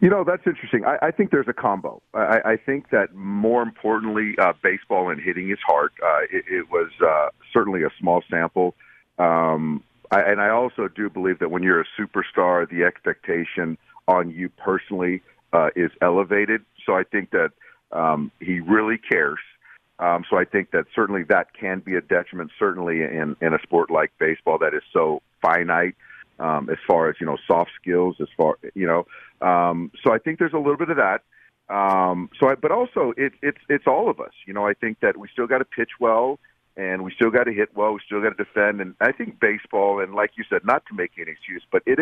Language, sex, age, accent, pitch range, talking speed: English, male, 50-69, American, 90-115 Hz, 215 wpm